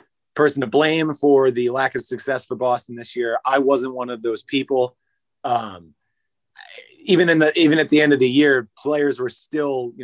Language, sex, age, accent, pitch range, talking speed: English, male, 20-39, American, 120-140 Hz, 195 wpm